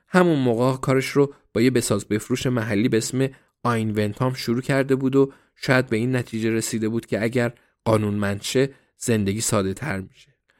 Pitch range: 105-130 Hz